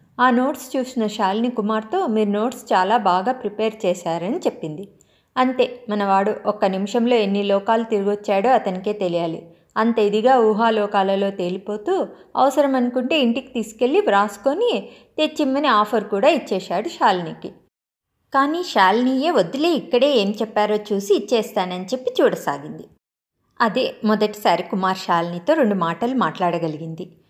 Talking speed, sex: 115 wpm, female